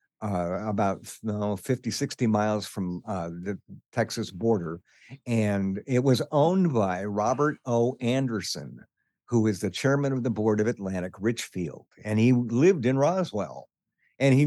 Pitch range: 100-125 Hz